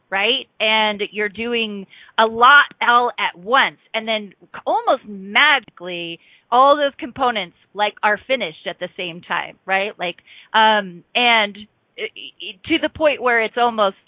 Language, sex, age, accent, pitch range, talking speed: English, female, 30-49, American, 200-275 Hz, 150 wpm